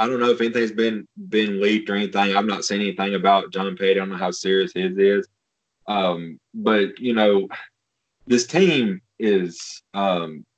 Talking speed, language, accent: 180 wpm, English, American